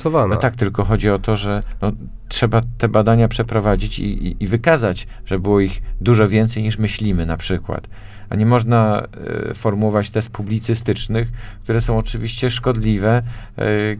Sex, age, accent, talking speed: male, 50-69, native, 160 wpm